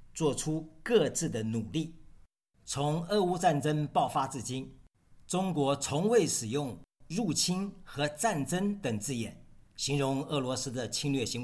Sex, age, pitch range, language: male, 50-69, 130-170 Hz, Chinese